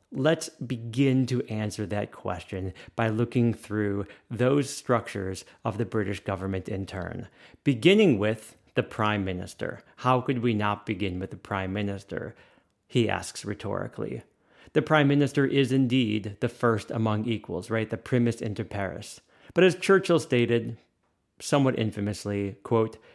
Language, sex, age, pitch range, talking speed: English, male, 30-49, 105-130 Hz, 145 wpm